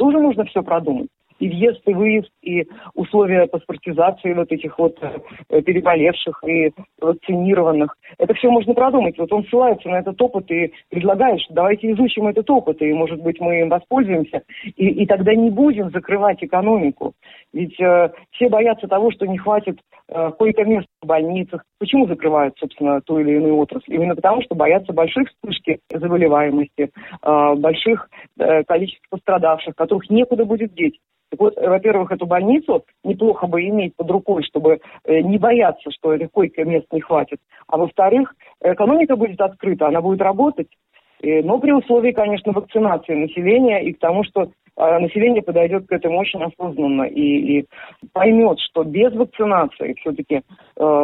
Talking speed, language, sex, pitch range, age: 155 wpm, Russian, female, 160-215 Hz, 40-59